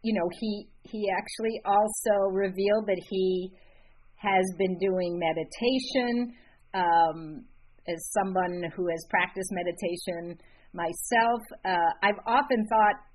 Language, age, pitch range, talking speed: English, 50-69, 175-225 Hz, 115 wpm